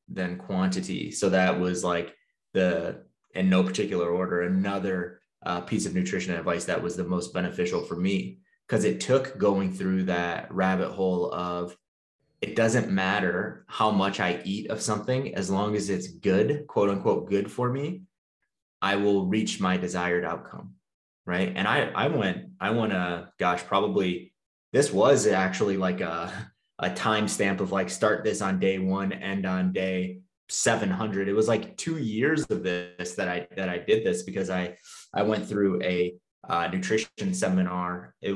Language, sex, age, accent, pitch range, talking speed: English, male, 20-39, American, 90-110 Hz, 175 wpm